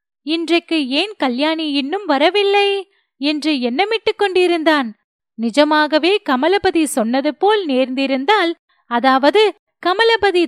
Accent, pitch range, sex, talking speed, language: native, 290-410 Hz, female, 85 wpm, Tamil